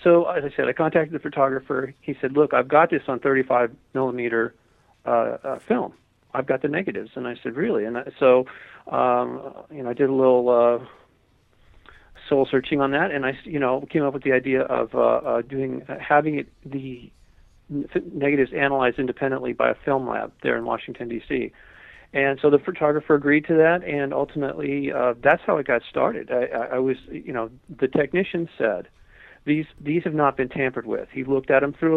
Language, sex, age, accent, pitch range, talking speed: English, male, 40-59, American, 125-150 Hz, 200 wpm